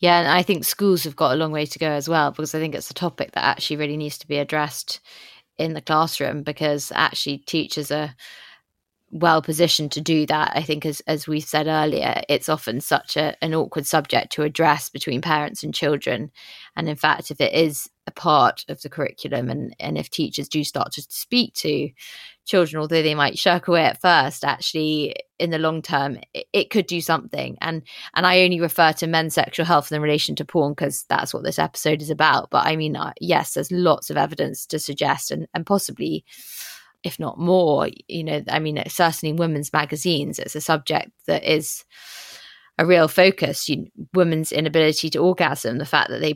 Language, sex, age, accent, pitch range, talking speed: English, female, 20-39, British, 150-165 Hz, 205 wpm